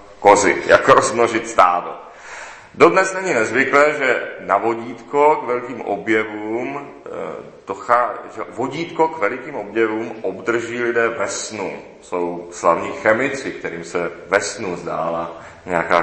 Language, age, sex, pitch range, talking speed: Czech, 40-59, male, 90-115 Hz, 120 wpm